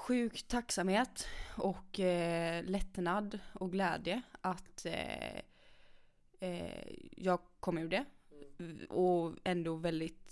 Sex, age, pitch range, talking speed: female, 20-39, 170-200 Hz, 80 wpm